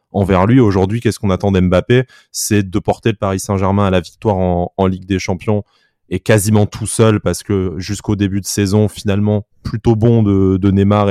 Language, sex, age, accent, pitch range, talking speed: French, male, 20-39, French, 95-105 Hz, 200 wpm